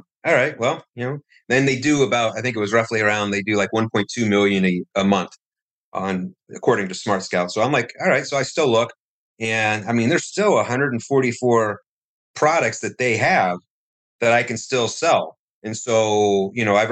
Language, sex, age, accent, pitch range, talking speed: English, male, 30-49, American, 100-120 Hz, 200 wpm